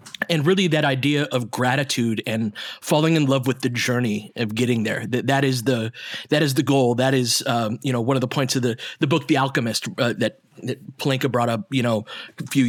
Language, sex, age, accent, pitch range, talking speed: English, male, 30-49, American, 120-145 Hz, 220 wpm